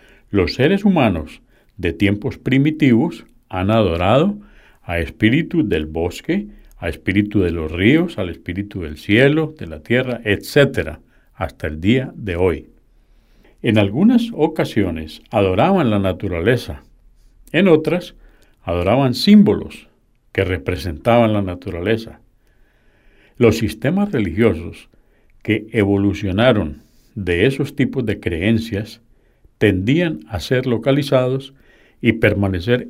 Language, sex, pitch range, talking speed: Spanish, male, 90-130 Hz, 110 wpm